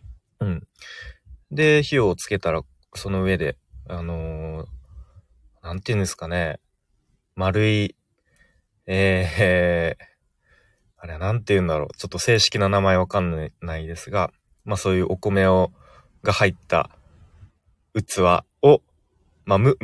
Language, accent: Japanese, native